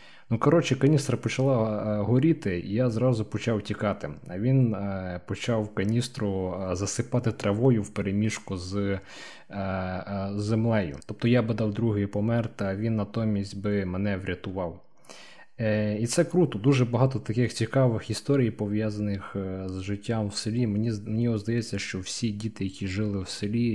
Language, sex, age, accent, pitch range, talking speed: Ukrainian, male, 20-39, native, 100-115 Hz, 140 wpm